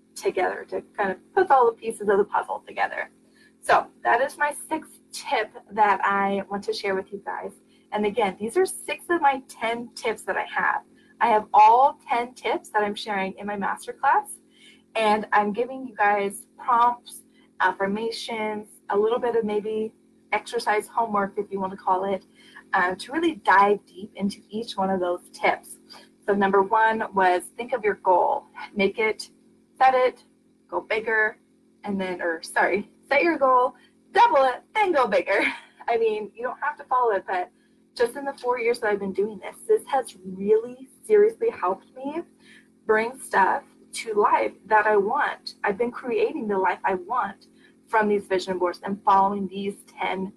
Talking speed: 180 wpm